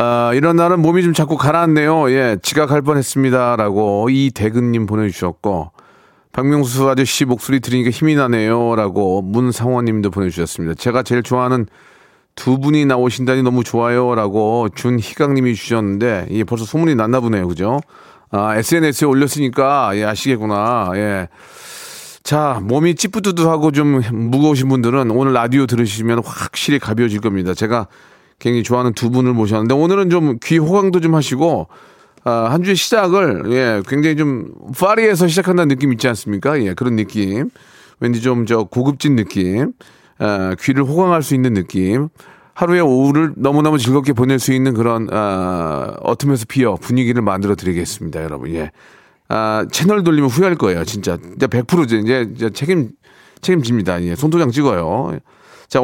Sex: male